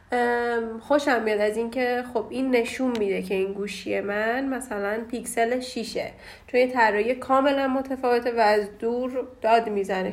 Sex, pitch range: female, 230-270 Hz